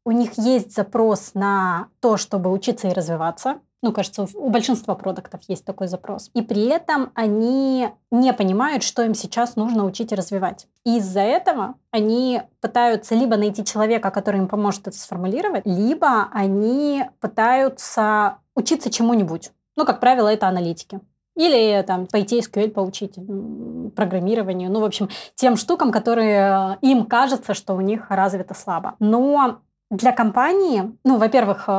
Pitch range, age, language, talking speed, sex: 195-235 Hz, 20-39, Russian, 150 wpm, female